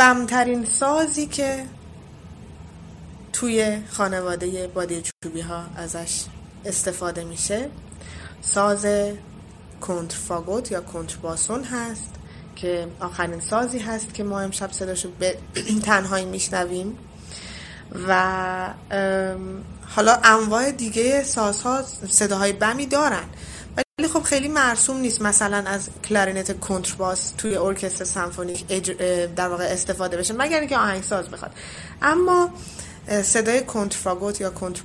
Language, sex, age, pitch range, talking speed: Persian, female, 20-39, 185-225 Hz, 105 wpm